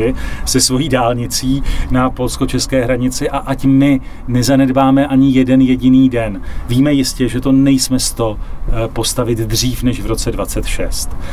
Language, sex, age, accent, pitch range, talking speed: Czech, male, 40-59, native, 115-135 Hz, 145 wpm